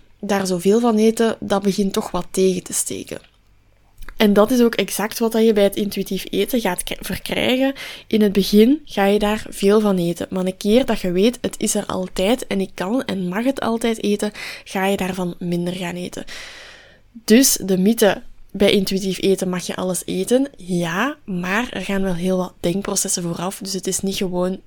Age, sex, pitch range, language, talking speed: 20-39, female, 185-220 Hz, Dutch, 195 wpm